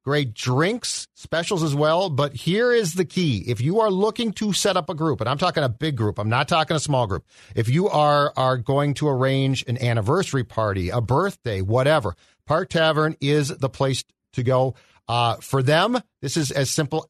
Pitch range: 120-155 Hz